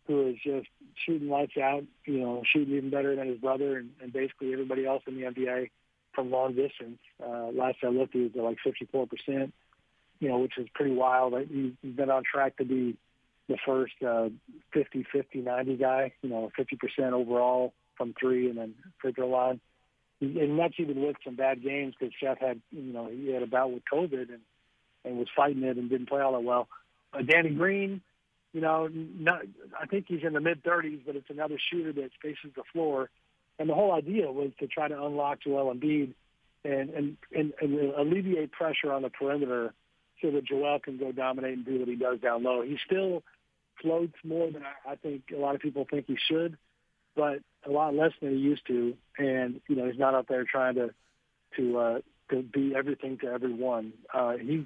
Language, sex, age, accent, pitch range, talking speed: English, male, 40-59, American, 125-145 Hz, 205 wpm